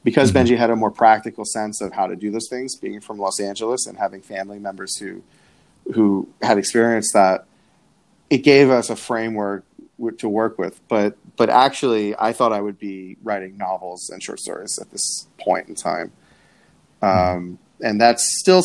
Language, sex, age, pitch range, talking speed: English, male, 30-49, 100-125 Hz, 180 wpm